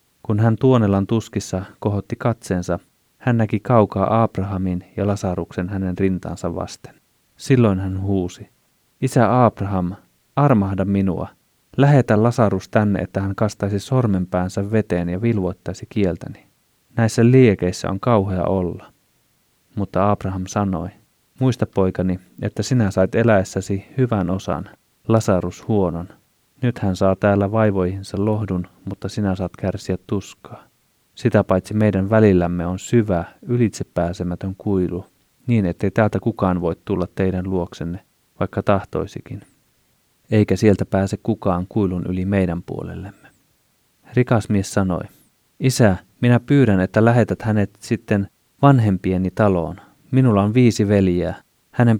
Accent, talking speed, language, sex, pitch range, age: native, 120 wpm, Finnish, male, 95-110 Hz, 30-49